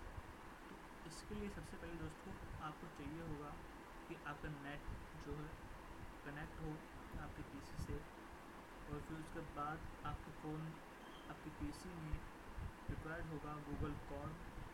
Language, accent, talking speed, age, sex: Hindi, native, 120 wpm, 30-49, male